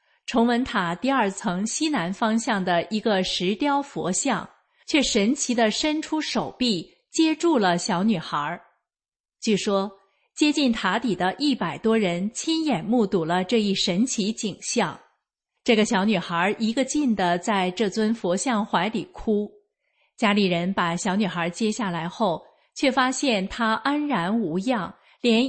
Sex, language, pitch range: female, Chinese, 185-245 Hz